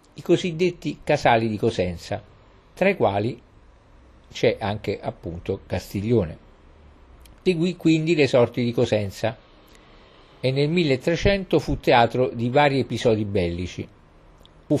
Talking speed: 110 wpm